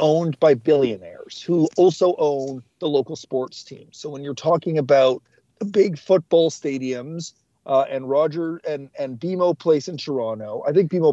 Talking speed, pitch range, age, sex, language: 165 wpm, 135-170 Hz, 40-59, male, English